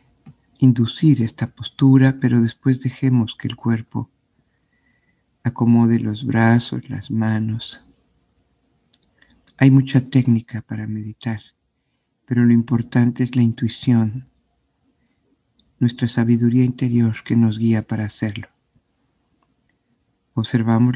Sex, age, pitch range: male, 50-69, 115-130 Hz